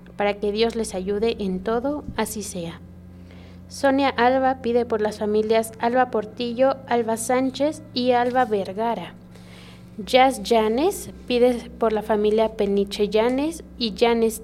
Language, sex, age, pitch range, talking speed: Spanish, female, 20-39, 210-245 Hz, 135 wpm